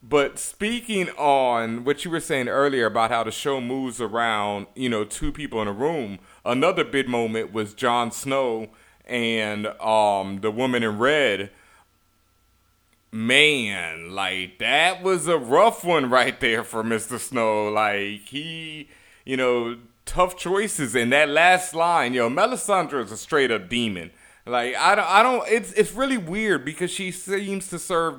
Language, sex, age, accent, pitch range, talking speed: English, male, 30-49, American, 110-165 Hz, 165 wpm